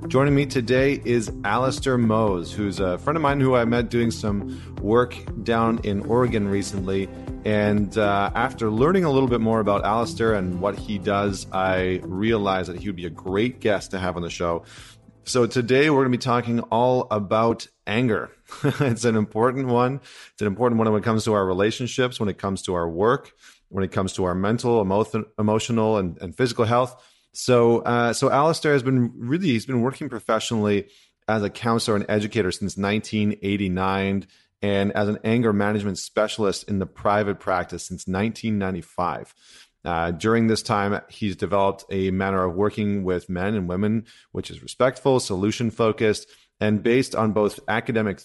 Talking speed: 180 wpm